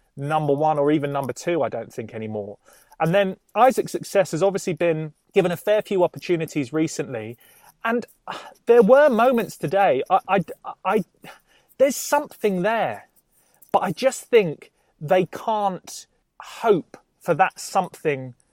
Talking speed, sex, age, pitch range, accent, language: 135 wpm, male, 30-49, 155-220 Hz, British, English